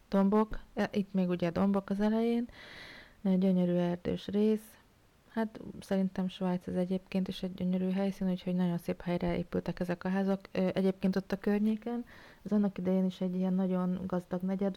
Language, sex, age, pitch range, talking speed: Hungarian, female, 30-49, 180-200 Hz, 165 wpm